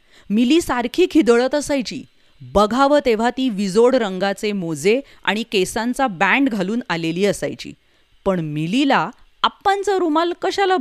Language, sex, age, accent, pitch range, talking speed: Hindi, female, 30-49, native, 180-255 Hz, 60 wpm